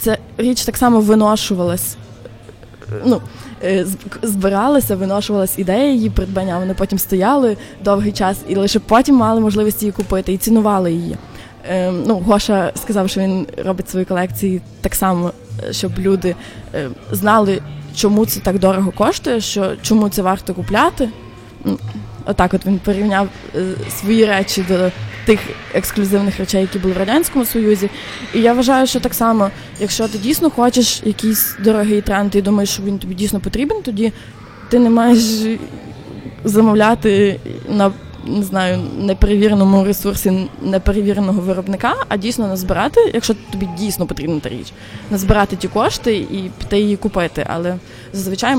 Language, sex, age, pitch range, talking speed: Ukrainian, female, 20-39, 185-220 Hz, 140 wpm